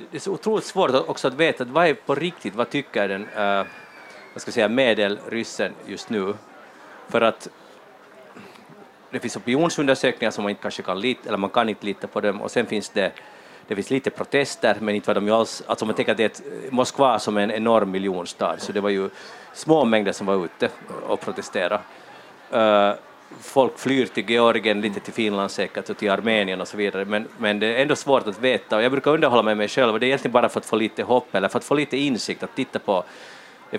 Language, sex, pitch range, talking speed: Swedish, male, 100-130 Hz, 225 wpm